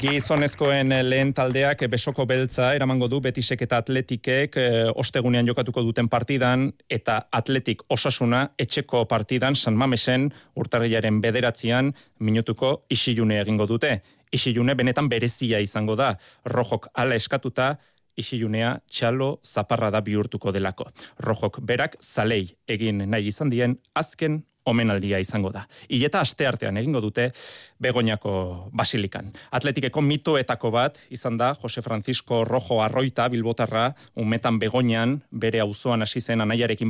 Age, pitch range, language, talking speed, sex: 30-49, 110-130 Hz, Spanish, 125 wpm, male